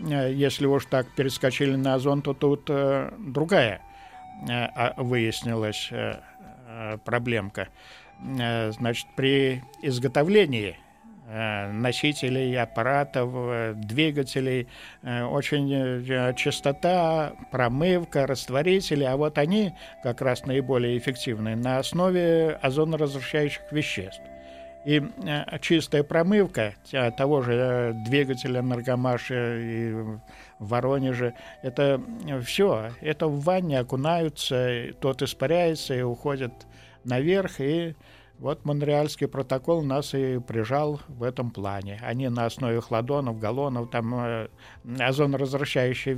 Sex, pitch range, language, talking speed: male, 120-145 Hz, Russian, 90 wpm